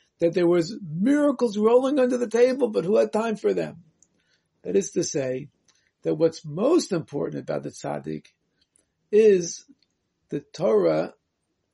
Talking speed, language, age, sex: 145 wpm, English, 60-79, male